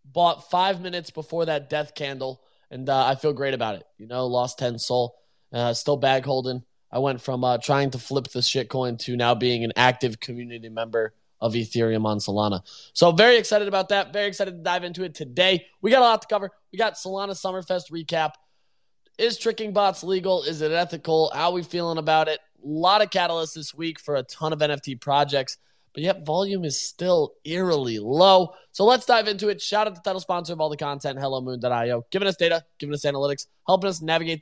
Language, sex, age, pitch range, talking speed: English, male, 20-39, 130-175 Hz, 215 wpm